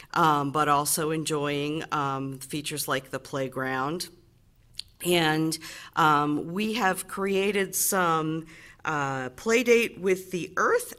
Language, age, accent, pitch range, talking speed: English, 50-69, American, 150-190 Hz, 110 wpm